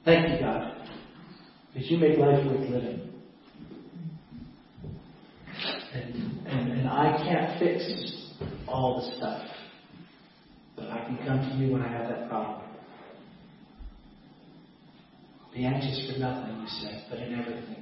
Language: English